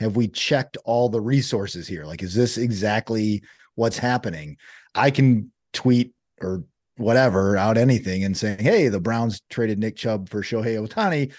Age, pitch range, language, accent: 30-49, 105-135 Hz, English, American